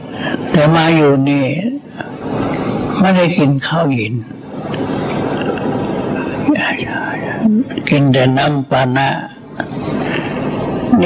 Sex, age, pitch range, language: male, 60-79, 135-165 Hz, Thai